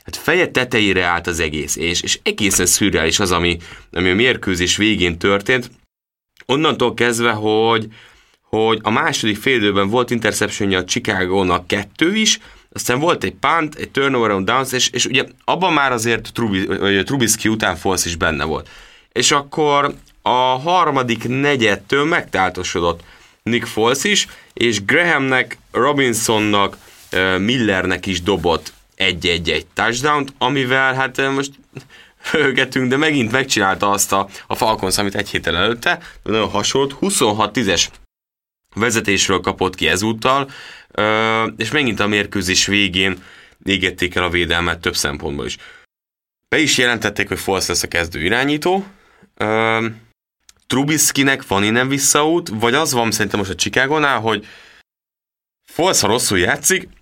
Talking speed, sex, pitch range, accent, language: 135 wpm, male, 95-130 Hz, Finnish, English